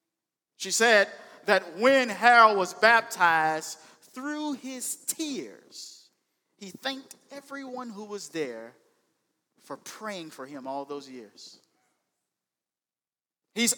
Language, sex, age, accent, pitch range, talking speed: English, male, 50-69, American, 195-270 Hz, 105 wpm